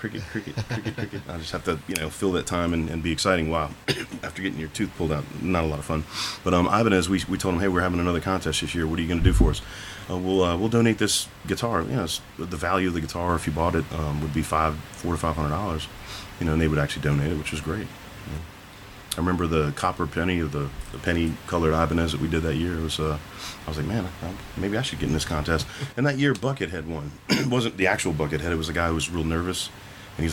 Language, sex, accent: English, male, American